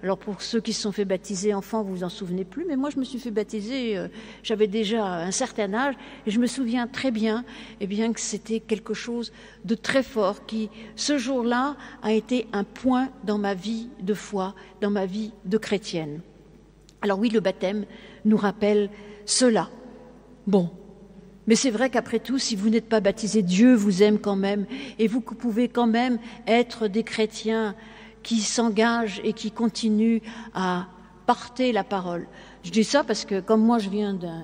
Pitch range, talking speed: 205-240 Hz, 190 wpm